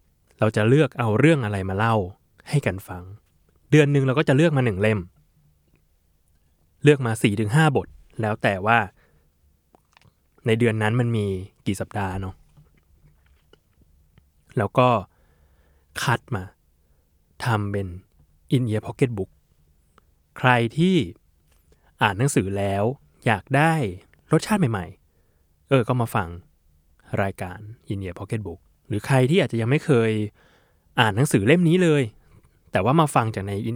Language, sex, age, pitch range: Thai, male, 20-39, 80-120 Hz